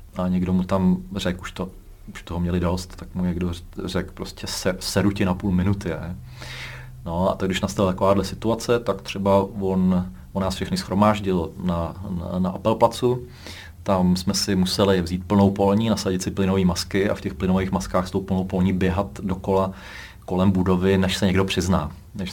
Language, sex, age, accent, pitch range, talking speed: Czech, male, 30-49, native, 90-100 Hz, 185 wpm